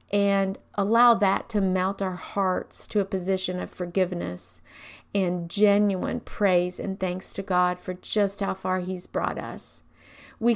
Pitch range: 185-225 Hz